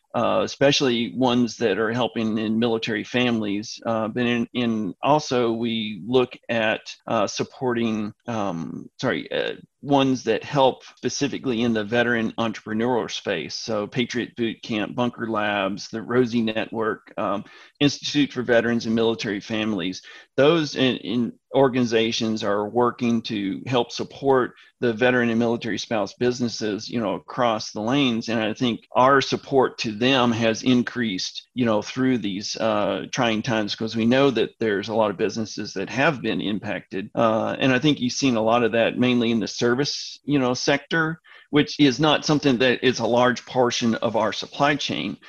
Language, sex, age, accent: English, male, 40-59, American